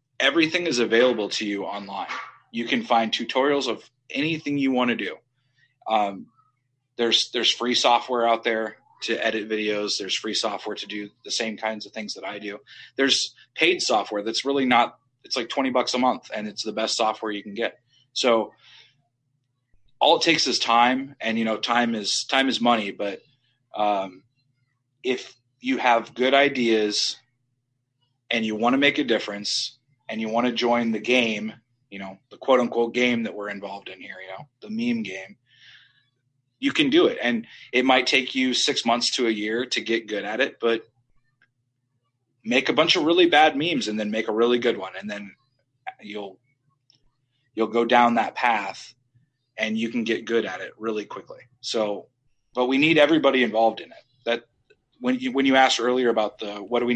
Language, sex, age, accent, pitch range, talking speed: English, male, 30-49, American, 110-130 Hz, 190 wpm